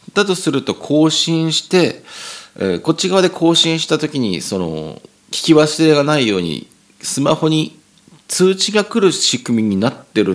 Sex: male